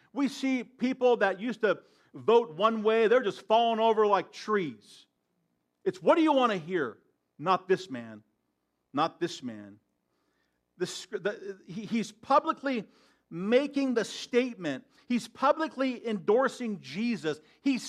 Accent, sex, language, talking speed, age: American, male, English, 140 wpm, 50-69